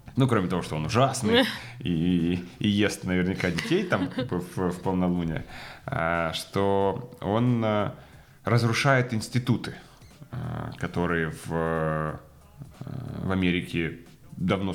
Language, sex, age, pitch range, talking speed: Ukrainian, male, 30-49, 90-115 Hz, 100 wpm